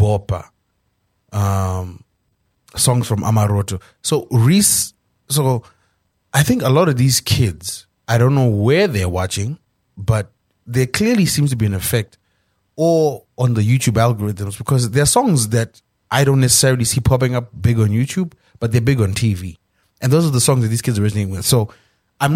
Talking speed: 175 wpm